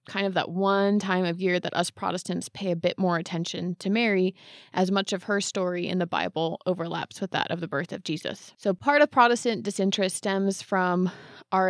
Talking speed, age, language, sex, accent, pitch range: 210 wpm, 20-39, English, female, American, 175-200 Hz